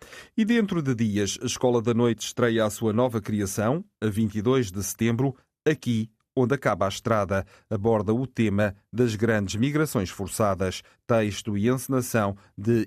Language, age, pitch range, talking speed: Portuguese, 40-59, 105-125 Hz, 155 wpm